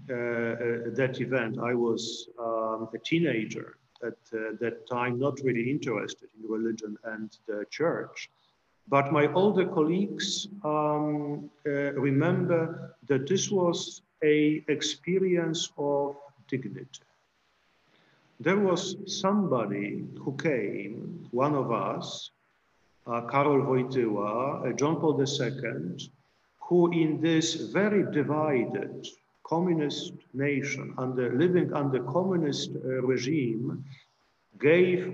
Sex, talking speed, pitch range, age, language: male, 110 wpm, 130-170 Hz, 50-69, Polish